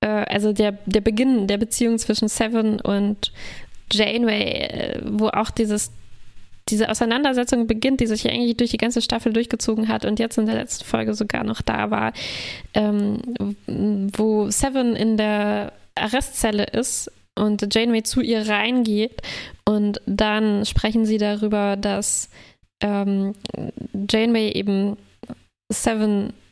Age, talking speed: 20-39, 130 wpm